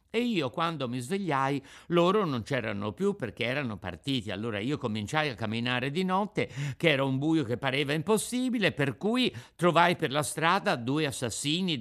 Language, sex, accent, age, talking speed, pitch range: Italian, male, native, 50-69, 175 wpm, 120-180 Hz